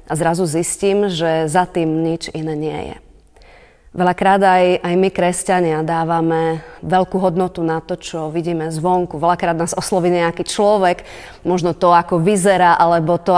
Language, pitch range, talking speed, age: Slovak, 165-190 Hz, 155 wpm, 30-49